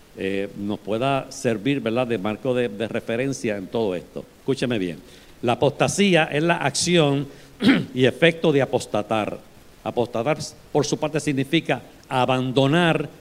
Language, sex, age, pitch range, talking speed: Spanish, male, 60-79, 120-160 Hz, 135 wpm